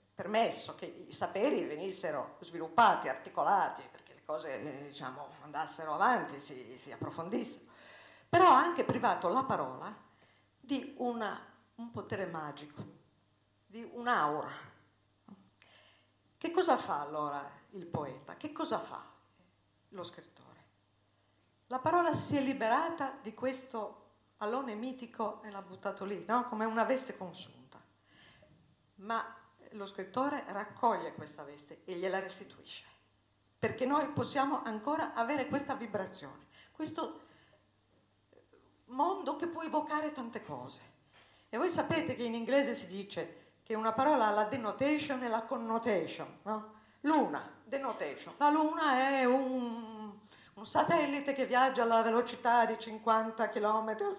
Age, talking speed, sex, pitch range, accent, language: 50-69, 130 wpm, female, 170-265 Hz, native, Italian